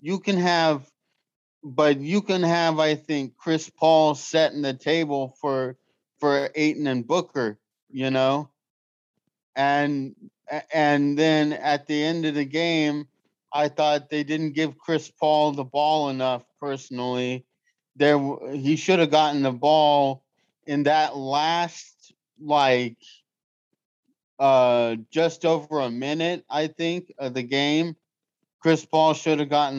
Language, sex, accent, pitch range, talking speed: English, male, American, 135-160 Hz, 135 wpm